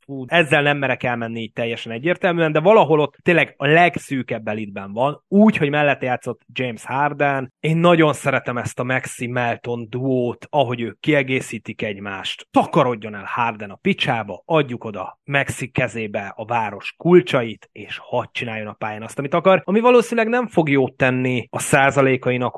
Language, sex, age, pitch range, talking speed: Hungarian, male, 30-49, 115-150 Hz, 165 wpm